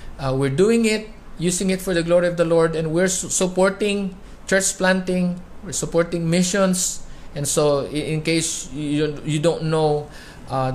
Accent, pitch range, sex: Filipino, 130-180 Hz, male